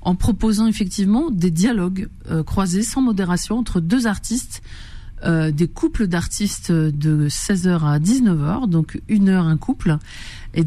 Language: French